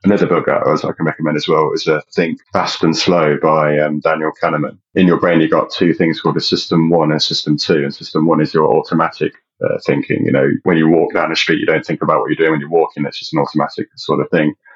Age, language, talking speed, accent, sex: 30-49, English, 270 wpm, British, male